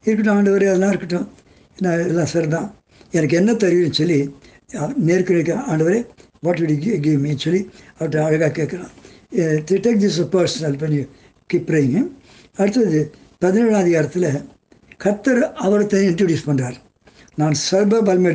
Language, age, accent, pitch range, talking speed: Tamil, 60-79, native, 150-195 Hz, 135 wpm